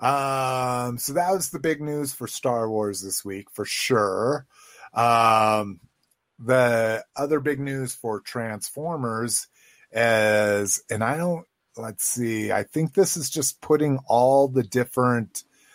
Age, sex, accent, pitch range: 30-49, male, American, 105-140 Hz